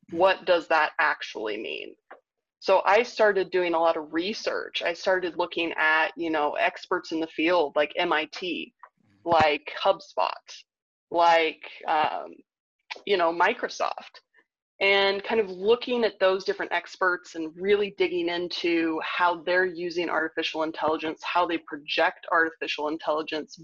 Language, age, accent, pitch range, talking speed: English, 20-39, American, 160-210 Hz, 135 wpm